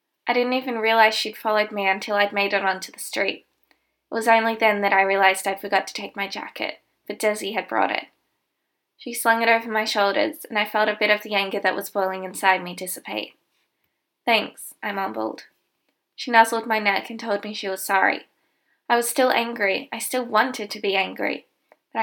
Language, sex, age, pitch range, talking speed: English, female, 20-39, 200-230 Hz, 205 wpm